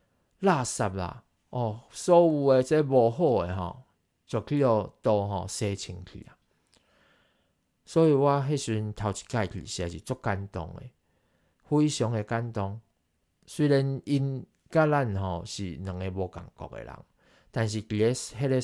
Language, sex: Chinese, male